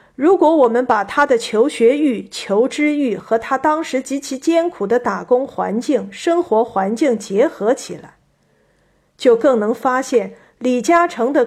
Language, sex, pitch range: Chinese, female, 210-275 Hz